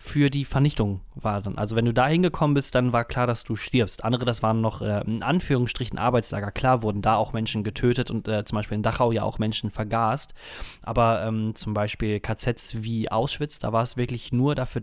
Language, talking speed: German, 220 wpm